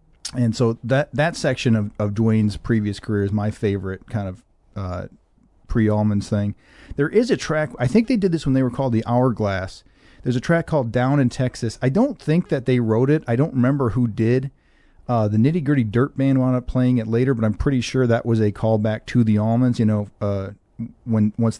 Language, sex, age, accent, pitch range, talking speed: English, male, 40-59, American, 110-125 Hz, 220 wpm